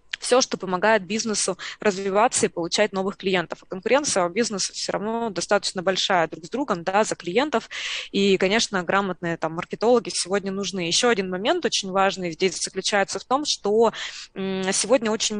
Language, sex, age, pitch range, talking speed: Russian, female, 20-39, 185-220 Hz, 160 wpm